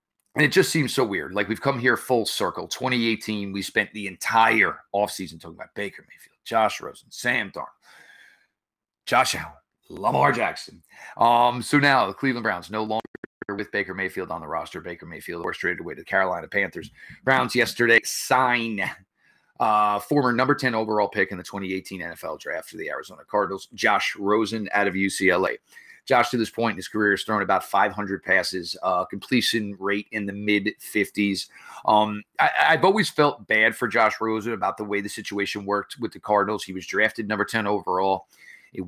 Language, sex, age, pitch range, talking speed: English, male, 30-49, 100-115 Hz, 185 wpm